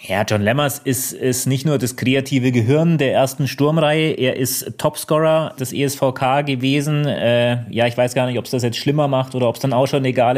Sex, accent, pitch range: male, German, 125-150 Hz